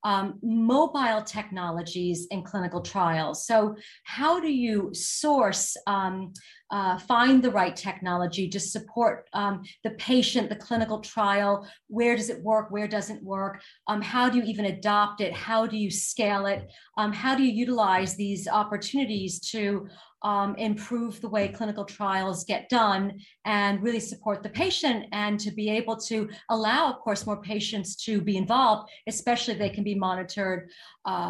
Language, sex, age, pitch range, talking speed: English, female, 40-59, 195-235 Hz, 160 wpm